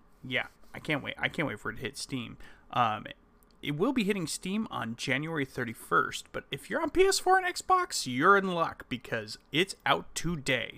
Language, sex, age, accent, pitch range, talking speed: English, male, 30-49, American, 115-170 Hz, 195 wpm